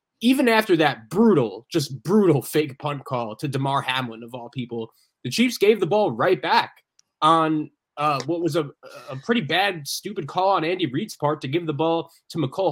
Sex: male